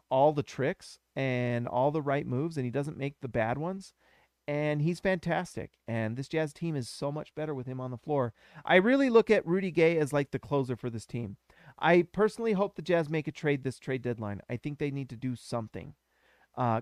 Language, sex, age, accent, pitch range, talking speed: English, male, 40-59, American, 125-165 Hz, 225 wpm